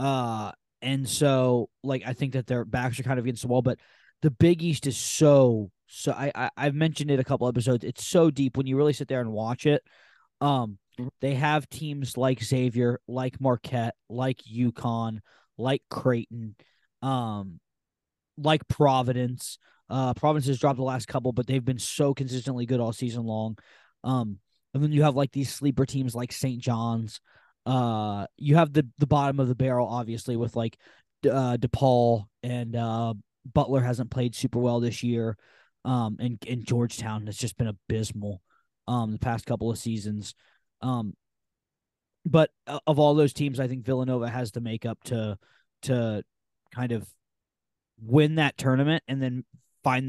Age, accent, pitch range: 20-39, American, 115-135 Hz